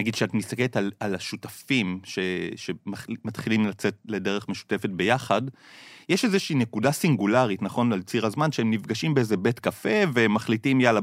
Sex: male